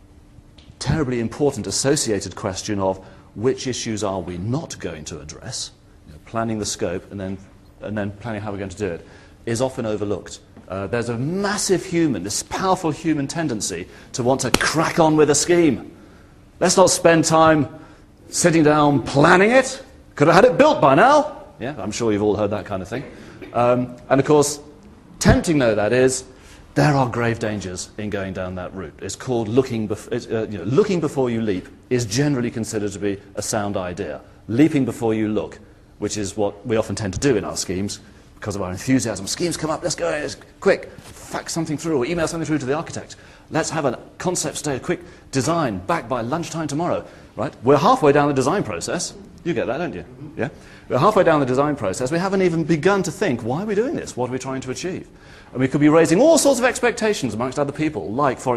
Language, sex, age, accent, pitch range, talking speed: English, male, 40-59, British, 105-155 Hz, 205 wpm